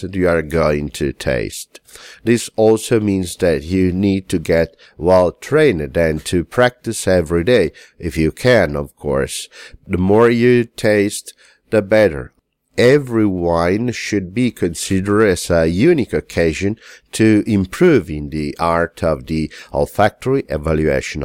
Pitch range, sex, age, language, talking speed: 85-115 Hz, male, 50-69, English, 140 wpm